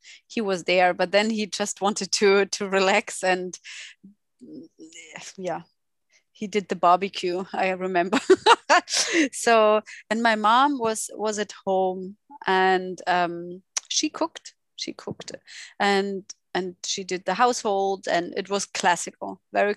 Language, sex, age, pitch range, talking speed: English, female, 30-49, 185-225 Hz, 135 wpm